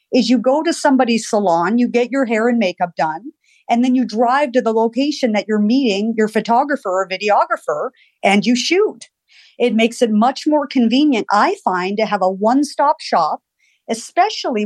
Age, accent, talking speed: 50-69, American, 180 wpm